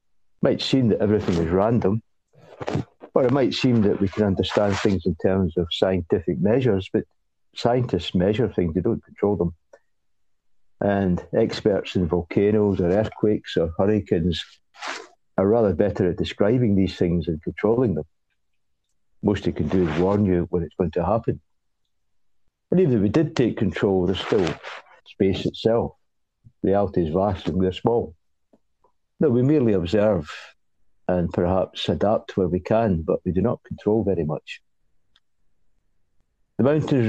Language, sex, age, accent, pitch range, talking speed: English, male, 60-79, British, 90-110 Hz, 155 wpm